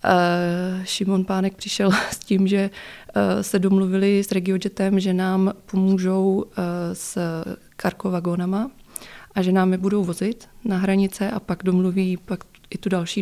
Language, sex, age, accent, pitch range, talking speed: Czech, female, 20-39, native, 180-205 Hz, 150 wpm